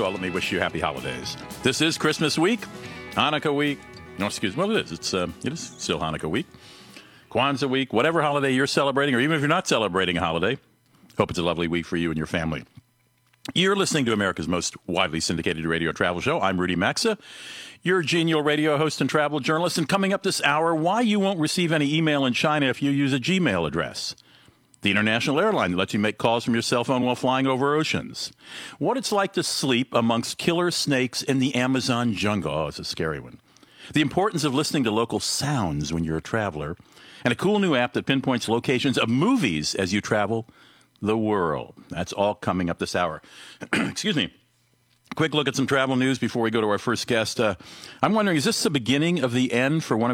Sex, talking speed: male, 215 wpm